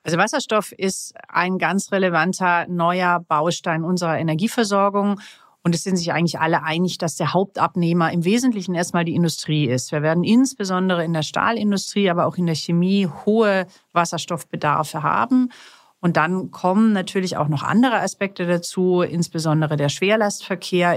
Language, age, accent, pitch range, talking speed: German, 40-59, German, 170-205 Hz, 150 wpm